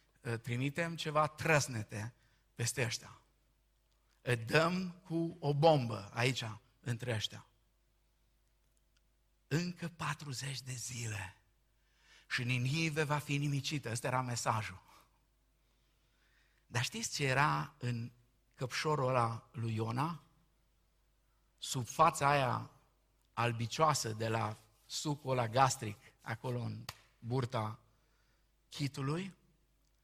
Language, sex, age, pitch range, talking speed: Romanian, male, 50-69, 115-165 Hz, 90 wpm